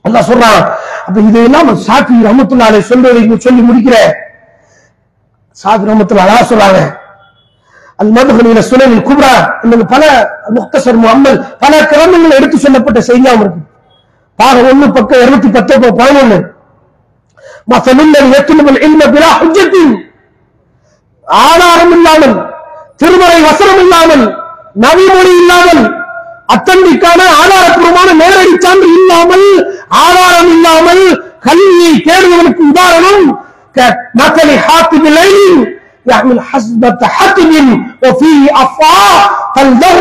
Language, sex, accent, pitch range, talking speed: English, male, Indian, 250-345 Hz, 80 wpm